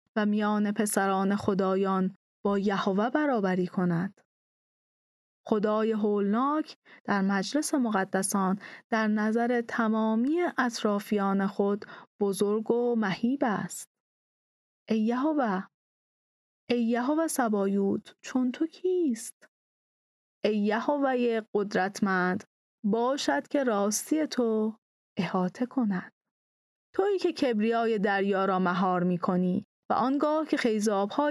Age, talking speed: 30-49, 100 wpm